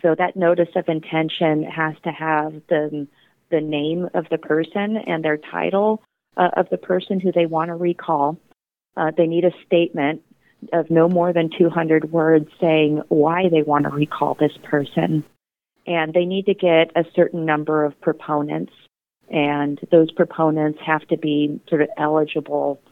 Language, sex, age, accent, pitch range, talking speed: English, female, 30-49, American, 150-170 Hz, 165 wpm